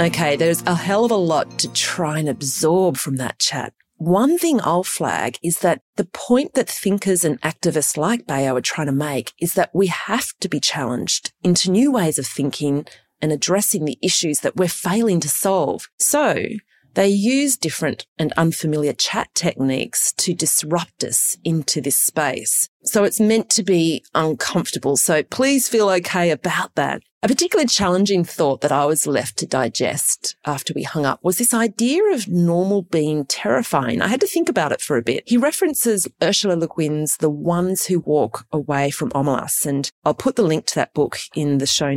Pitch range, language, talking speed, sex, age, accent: 150-205 Hz, English, 190 wpm, female, 30-49, Australian